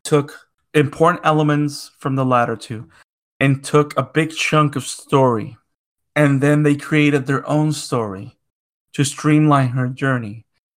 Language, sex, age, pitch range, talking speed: English, male, 30-49, 135-155 Hz, 140 wpm